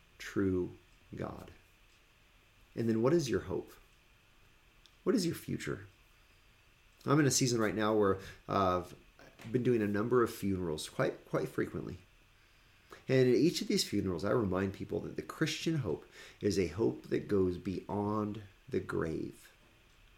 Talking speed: 150 wpm